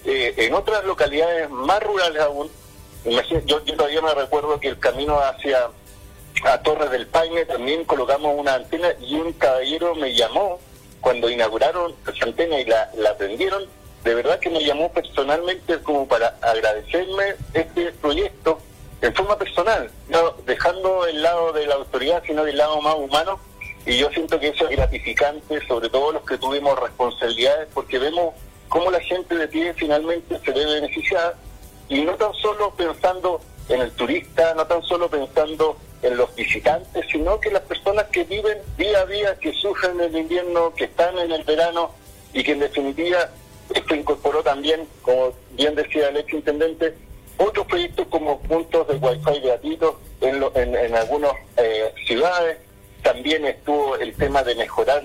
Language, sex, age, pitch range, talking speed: Spanish, male, 40-59, 140-170 Hz, 170 wpm